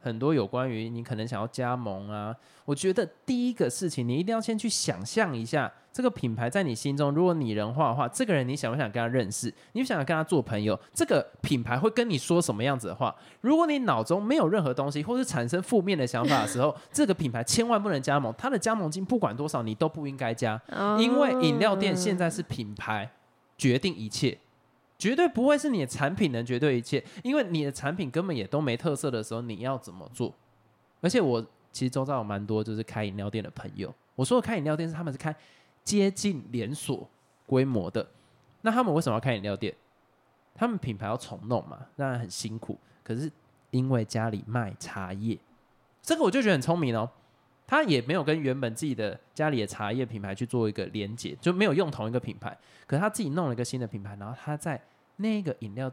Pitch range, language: 115-180 Hz, Chinese